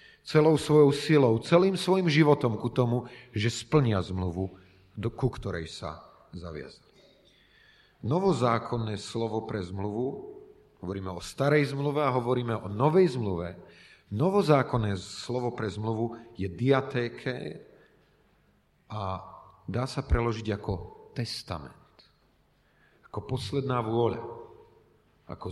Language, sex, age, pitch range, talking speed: Slovak, male, 40-59, 100-145 Hz, 105 wpm